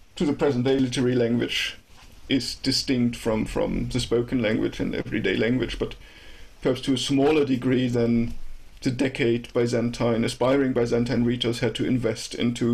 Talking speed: 145 wpm